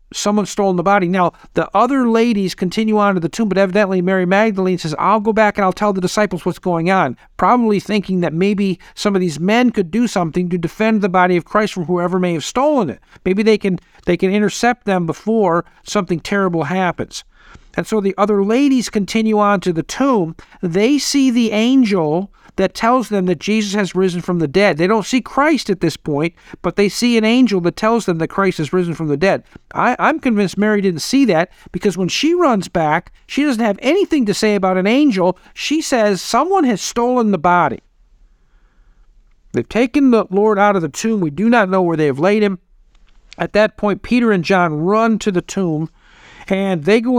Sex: male